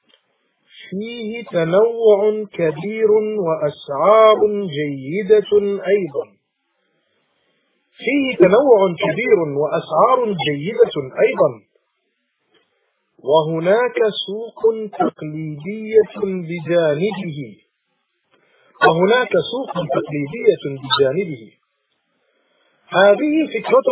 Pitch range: 170-275 Hz